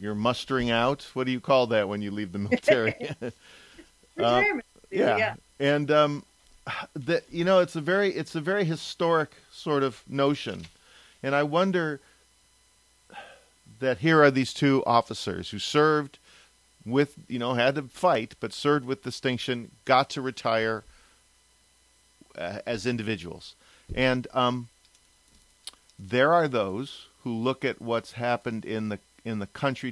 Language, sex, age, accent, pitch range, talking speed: English, male, 40-59, American, 110-140 Hz, 145 wpm